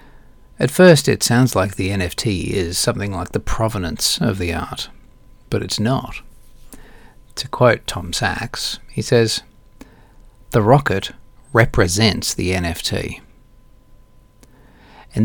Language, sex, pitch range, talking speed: English, male, 105-130 Hz, 120 wpm